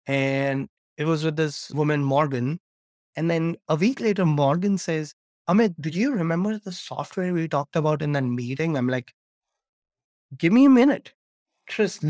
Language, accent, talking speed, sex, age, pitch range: English, Indian, 165 wpm, male, 30-49, 130-165 Hz